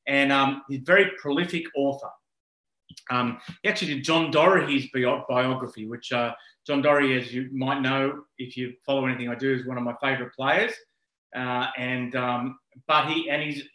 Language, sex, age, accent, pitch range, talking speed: English, male, 30-49, Australian, 125-150 Hz, 180 wpm